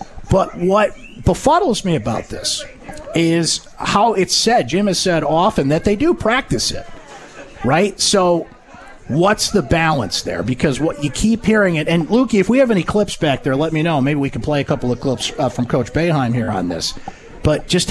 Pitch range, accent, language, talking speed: 135-175 Hz, American, English, 200 wpm